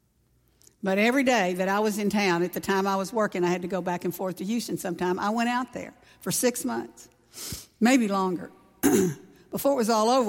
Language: English